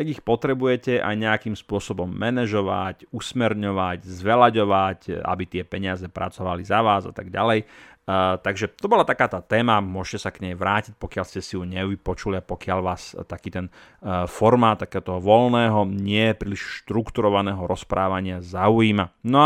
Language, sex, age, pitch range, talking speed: Slovak, male, 30-49, 95-115 Hz, 150 wpm